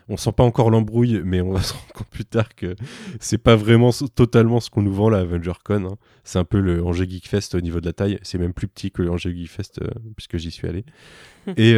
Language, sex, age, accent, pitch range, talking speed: French, male, 20-39, French, 90-105 Hz, 265 wpm